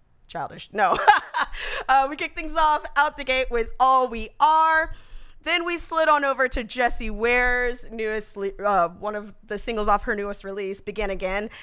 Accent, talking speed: American, 175 wpm